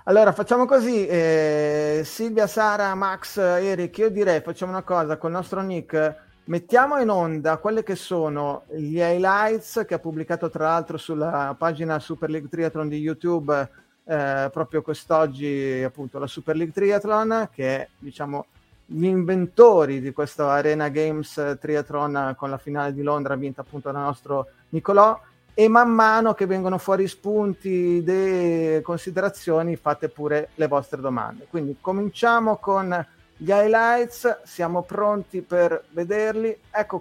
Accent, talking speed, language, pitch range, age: native, 145 wpm, Italian, 155-205 Hz, 30-49